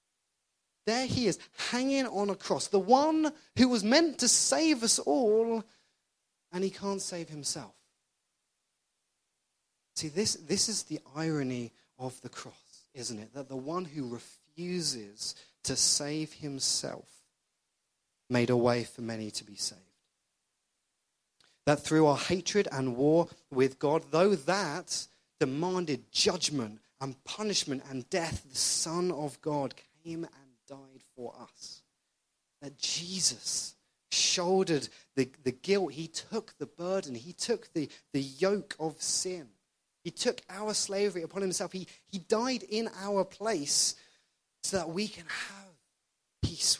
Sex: male